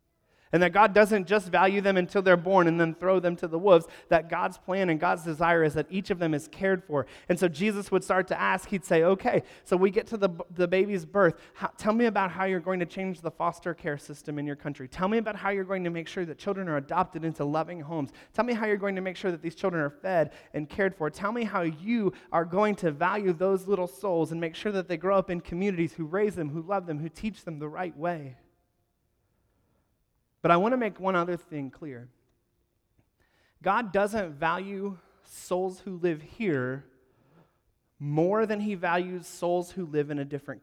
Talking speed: 230 wpm